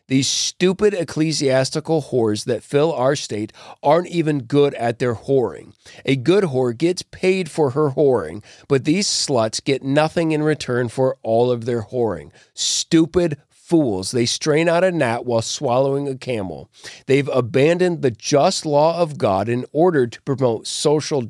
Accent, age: American, 40-59